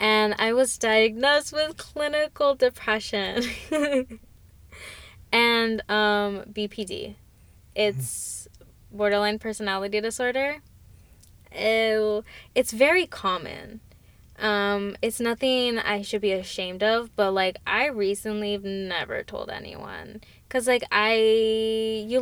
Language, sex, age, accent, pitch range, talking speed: English, female, 10-29, American, 195-225 Hz, 95 wpm